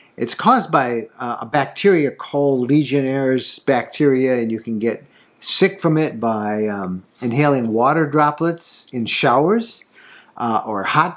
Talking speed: 140 wpm